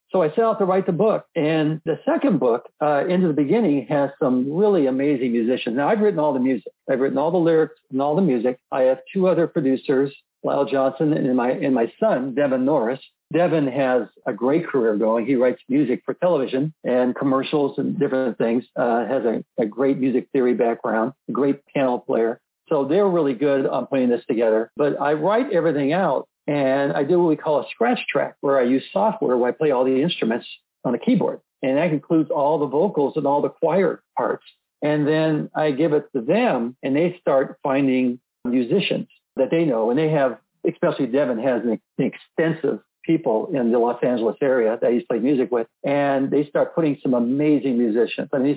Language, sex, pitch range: English, male, 130-160 Hz